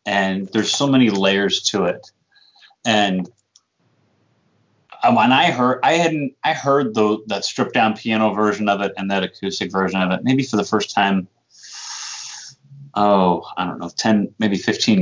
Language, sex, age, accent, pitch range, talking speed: English, male, 30-49, American, 95-115 Hz, 165 wpm